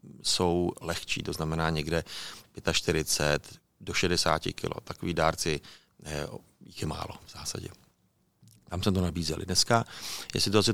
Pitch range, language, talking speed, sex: 80-95 Hz, Czech, 140 wpm, male